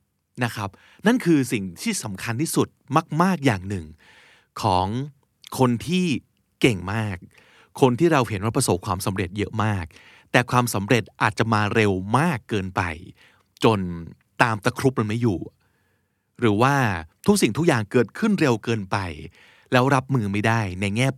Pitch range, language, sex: 100-135 Hz, Thai, male